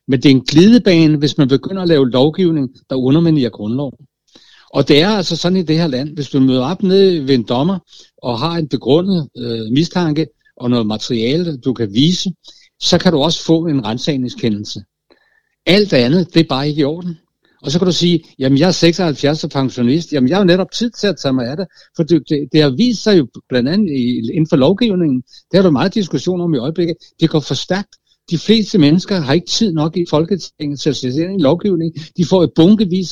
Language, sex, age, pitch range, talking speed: Danish, male, 60-79, 140-185 Hz, 220 wpm